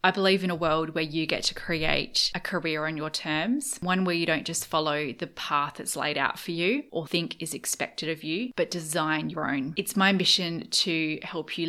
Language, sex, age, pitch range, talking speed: English, female, 20-39, 160-195 Hz, 225 wpm